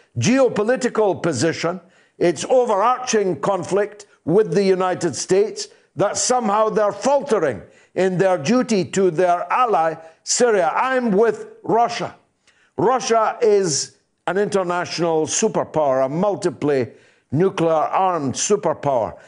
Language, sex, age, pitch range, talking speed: English, male, 60-79, 155-210 Hz, 100 wpm